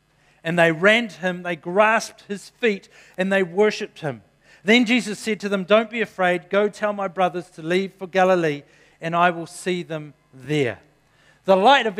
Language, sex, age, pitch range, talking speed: English, male, 50-69, 145-185 Hz, 190 wpm